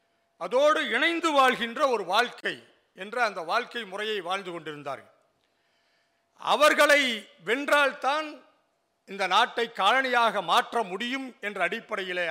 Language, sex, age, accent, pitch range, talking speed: Tamil, male, 50-69, native, 200-275 Hz, 95 wpm